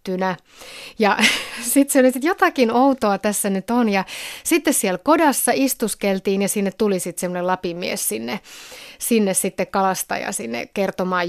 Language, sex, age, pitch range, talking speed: Finnish, female, 30-49, 185-225 Hz, 150 wpm